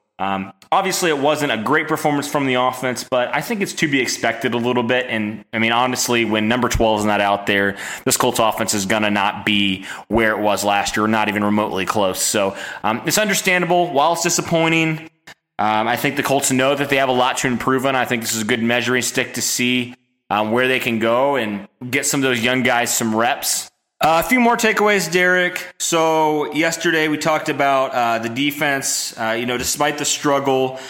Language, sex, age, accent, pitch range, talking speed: English, male, 20-39, American, 115-145 Hz, 220 wpm